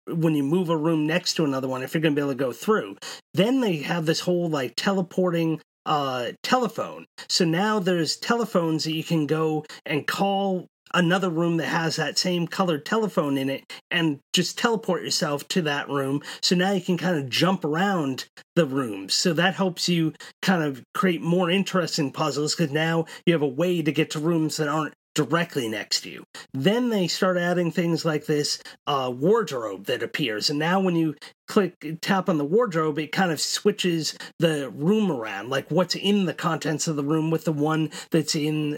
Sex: male